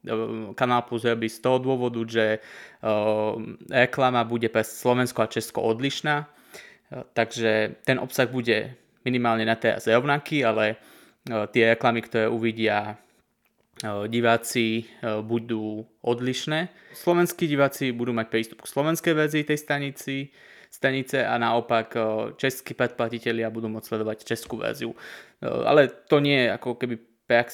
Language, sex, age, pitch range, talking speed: Slovak, male, 20-39, 115-125 Hz, 120 wpm